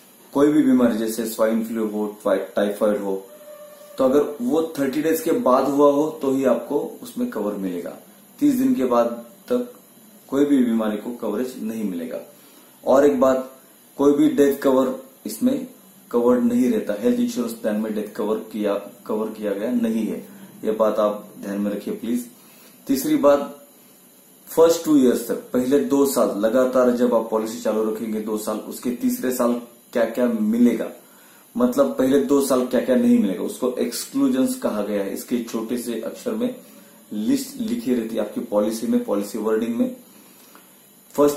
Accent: Indian